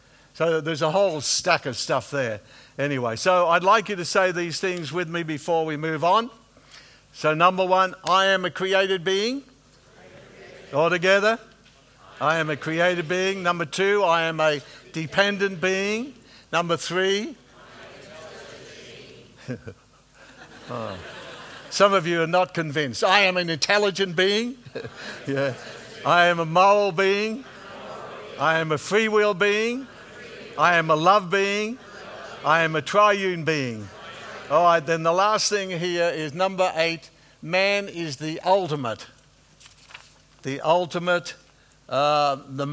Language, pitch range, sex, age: English, 145-190 Hz, male, 60-79